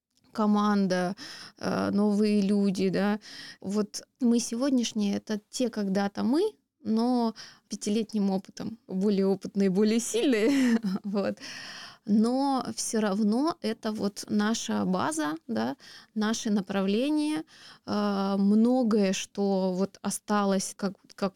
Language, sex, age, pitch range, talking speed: Russian, female, 20-39, 190-220 Hz, 95 wpm